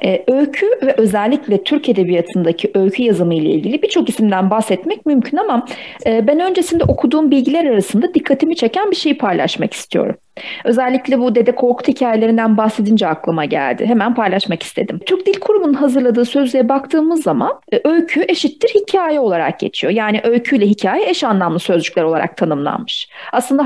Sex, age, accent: female, 40-59, native